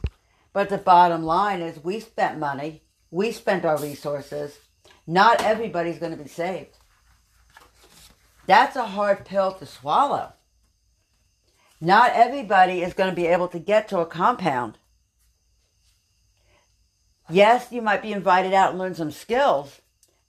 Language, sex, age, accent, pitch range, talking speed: English, female, 60-79, American, 150-200 Hz, 140 wpm